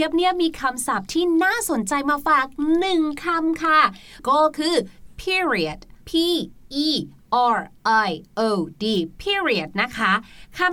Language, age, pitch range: Thai, 30-49, 230-320 Hz